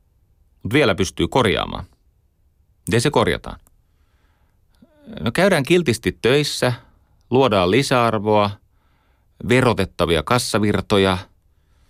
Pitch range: 85-110 Hz